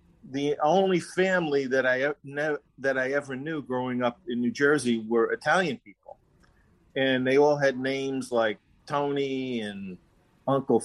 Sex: male